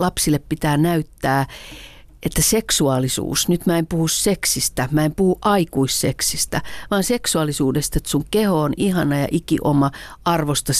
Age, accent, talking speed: 40-59, native, 140 wpm